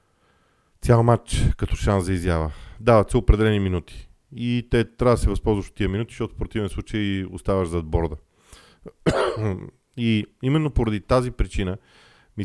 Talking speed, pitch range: 155 wpm, 90-110 Hz